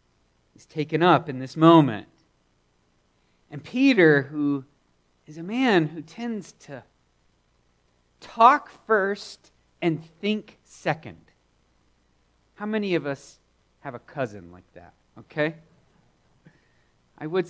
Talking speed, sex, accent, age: 105 wpm, male, American, 40-59